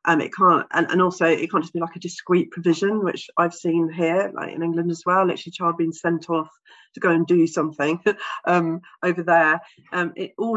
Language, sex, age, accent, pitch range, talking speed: English, female, 40-59, British, 165-190 Hz, 225 wpm